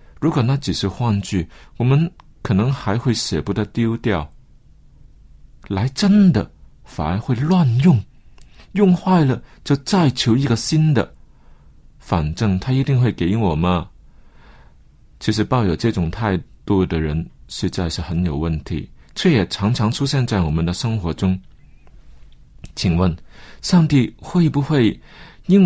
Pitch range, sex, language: 95-145 Hz, male, Chinese